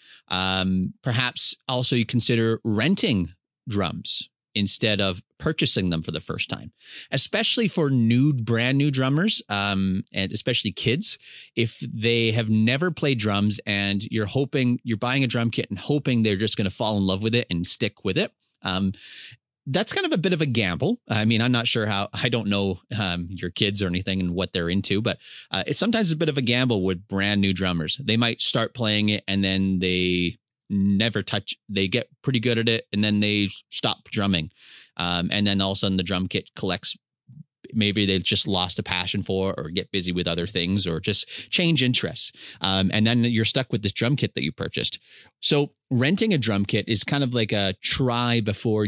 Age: 30-49